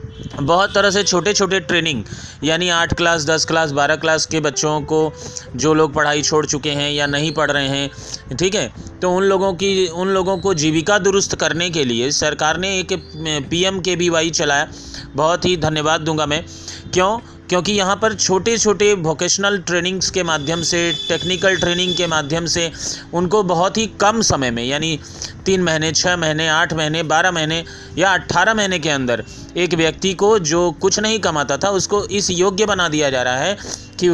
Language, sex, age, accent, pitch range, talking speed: Hindi, male, 30-49, native, 150-190 Hz, 185 wpm